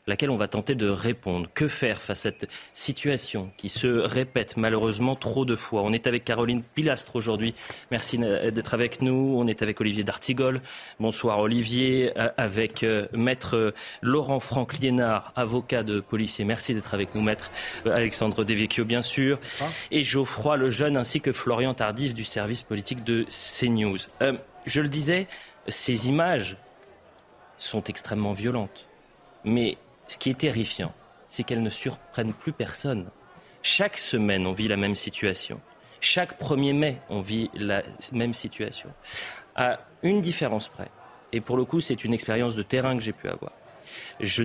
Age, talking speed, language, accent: 30-49, 160 wpm, French, French